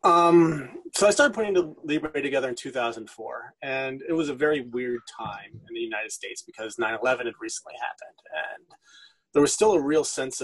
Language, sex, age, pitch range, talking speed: English, male, 30-49, 125-205 Hz, 190 wpm